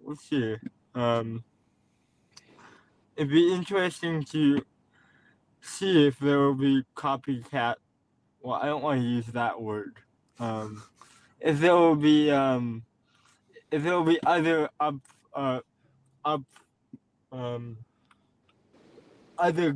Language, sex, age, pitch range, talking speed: English, male, 20-39, 130-160 Hz, 110 wpm